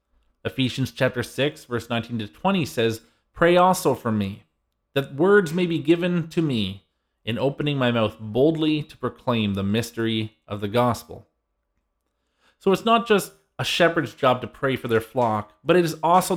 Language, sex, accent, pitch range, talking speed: English, male, American, 95-155 Hz, 170 wpm